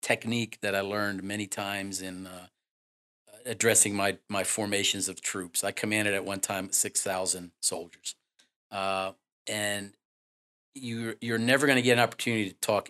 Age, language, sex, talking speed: 40-59, English, male, 160 wpm